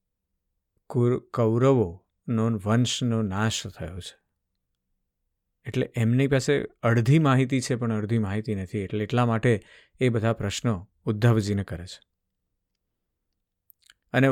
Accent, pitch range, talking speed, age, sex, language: native, 95-125 Hz, 105 wpm, 50-69, male, Gujarati